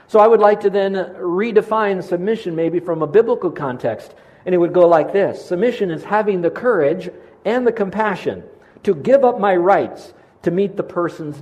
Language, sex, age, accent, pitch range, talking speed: English, male, 50-69, American, 160-195 Hz, 190 wpm